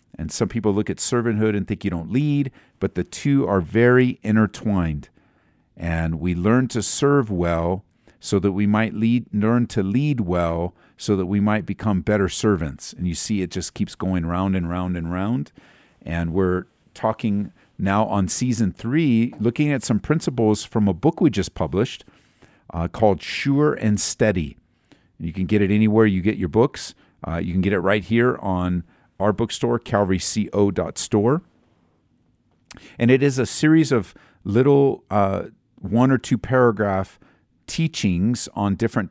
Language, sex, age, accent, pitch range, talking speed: English, male, 50-69, American, 95-115 Hz, 165 wpm